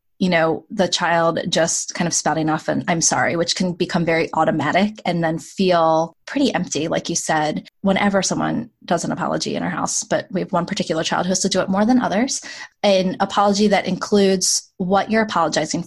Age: 20-39